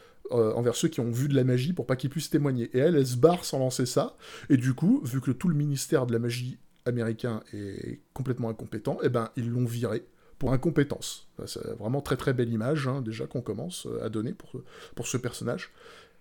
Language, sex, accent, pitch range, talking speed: French, male, French, 115-140 Hz, 220 wpm